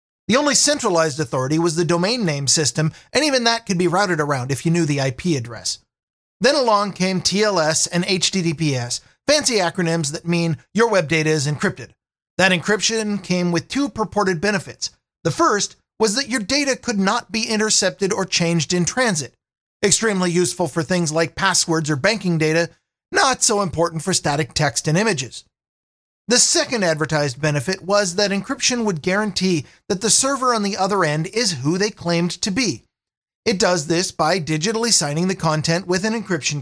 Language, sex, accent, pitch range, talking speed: English, male, American, 155-205 Hz, 175 wpm